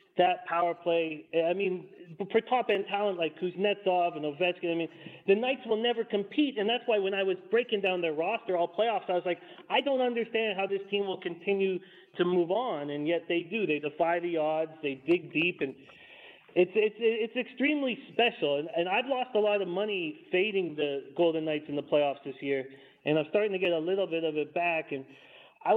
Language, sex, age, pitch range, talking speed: English, male, 40-59, 175-230 Hz, 215 wpm